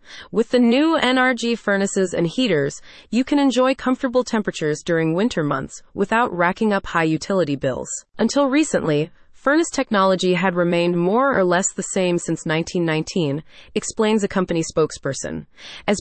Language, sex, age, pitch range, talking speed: English, female, 30-49, 170-240 Hz, 145 wpm